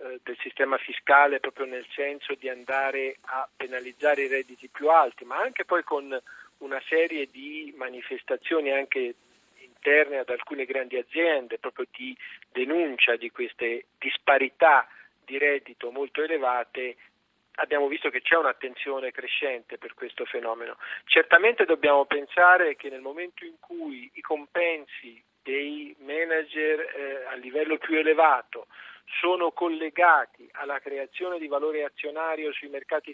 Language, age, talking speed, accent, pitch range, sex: Italian, 40-59, 130 wpm, native, 140-230 Hz, male